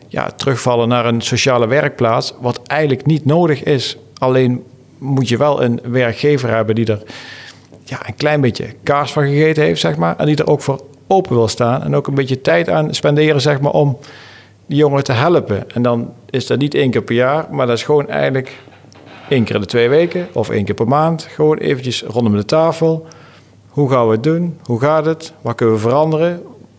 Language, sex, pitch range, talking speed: Dutch, male, 120-155 Hz, 210 wpm